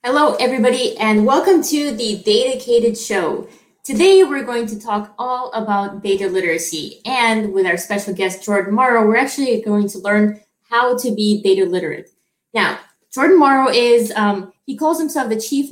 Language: English